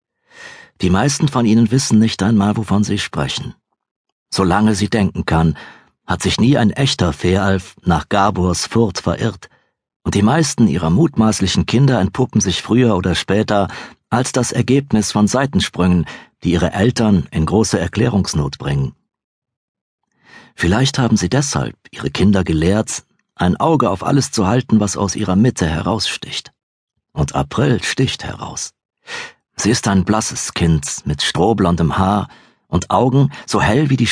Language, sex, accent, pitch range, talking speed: German, male, German, 90-115 Hz, 150 wpm